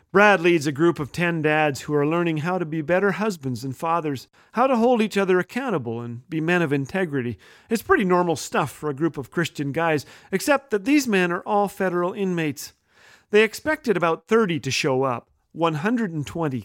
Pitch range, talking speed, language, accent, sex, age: 150-210 Hz, 195 wpm, English, American, male, 40-59